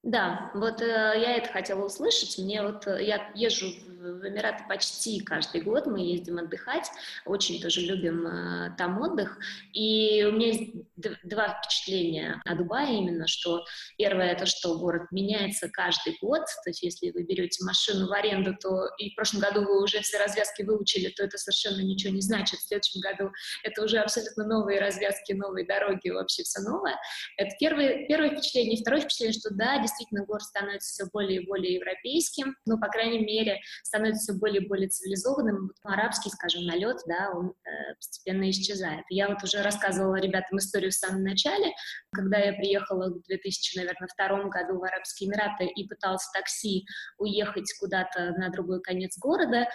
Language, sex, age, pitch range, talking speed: Russian, female, 20-39, 190-215 Hz, 170 wpm